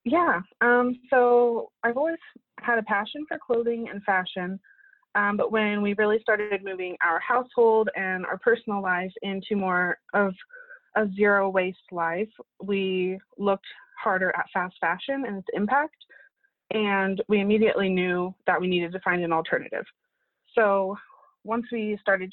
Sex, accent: female, American